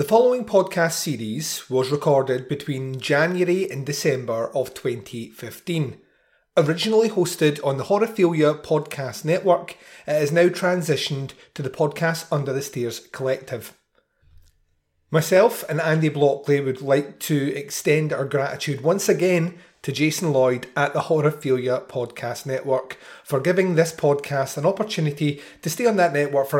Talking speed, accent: 140 wpm, British